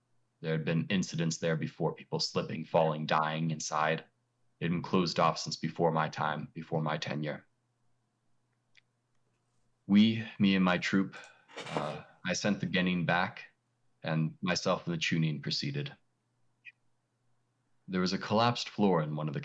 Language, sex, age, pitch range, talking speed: English, male, 30-49, 80-120 Hz, 150 wpm